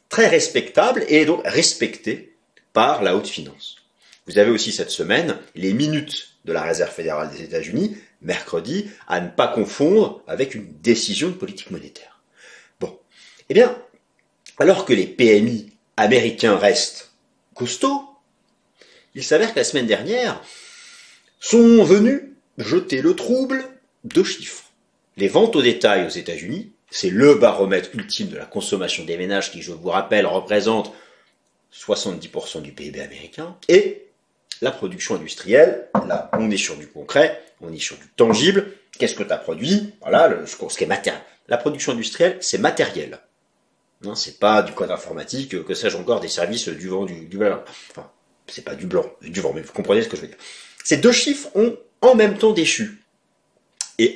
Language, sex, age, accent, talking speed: French, male, 40-59, French, 165 wpm